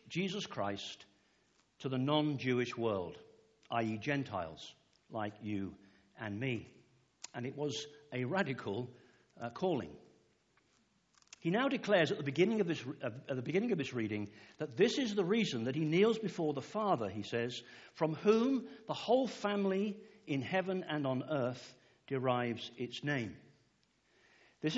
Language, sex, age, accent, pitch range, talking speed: English, male, 60-79, British, 120-180 Hz, 150 wpm